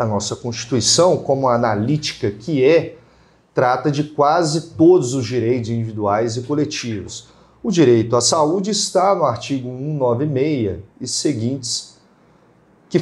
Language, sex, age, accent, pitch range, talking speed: Portuguese, male, 40-59, Brazilian, 120-170 Hz, 125 wpm